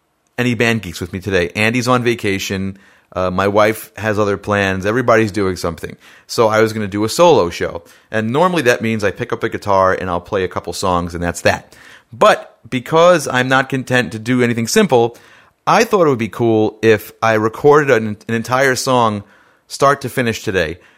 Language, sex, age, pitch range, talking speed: English, male, 30-49, 100-120 Hz, 205 wpm